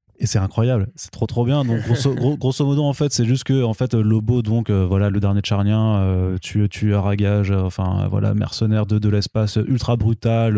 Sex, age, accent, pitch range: male, 20-39, French, 105-120 Hz